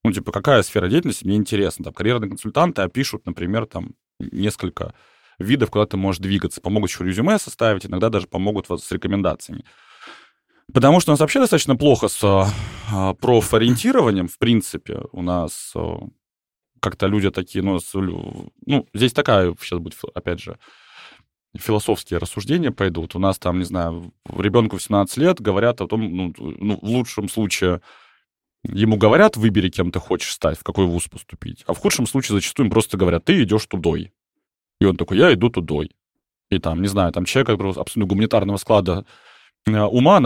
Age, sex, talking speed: 20-39, male, 165 wpm